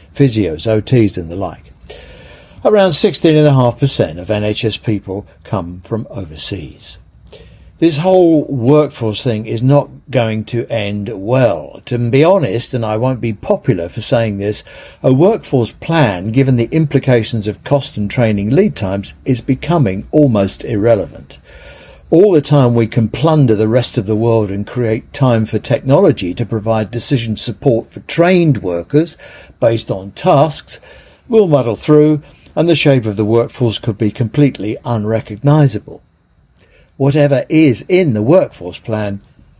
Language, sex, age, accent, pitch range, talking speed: English, male, 60-79, British, 110-145 Hz, 145 wpm